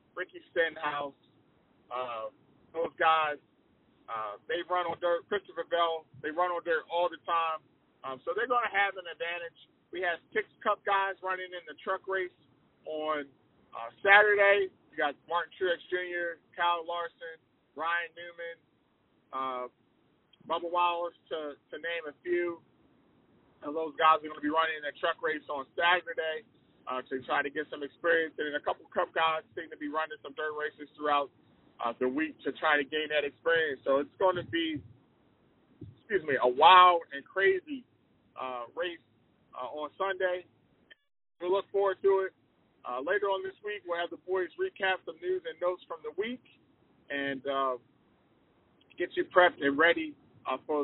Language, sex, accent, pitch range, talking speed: English, male, American, 145-190 Hz, 175 wpm